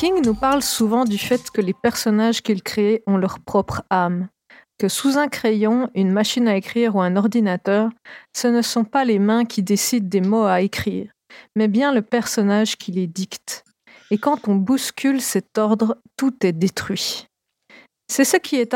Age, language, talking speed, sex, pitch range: 40-59, French, 185 wpm, female, 200-245 Hz